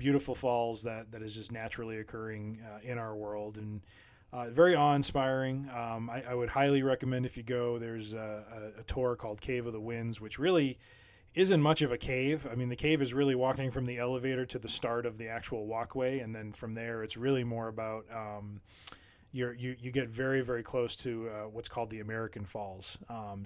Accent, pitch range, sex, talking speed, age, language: American, 110-125 Hz, male, 210 wpm, 20-39, English